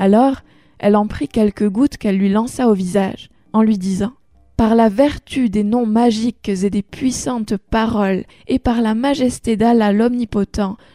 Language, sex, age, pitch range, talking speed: French, female, 20-39, 205-245 Hz, 165 wpm